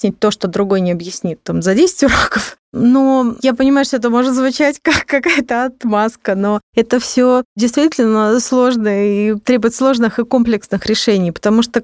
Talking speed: 160 wpm